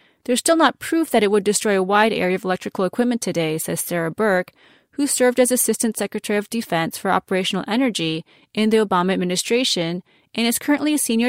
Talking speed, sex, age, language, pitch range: 195 wpm, female, 30-49, English, 185-250 Hz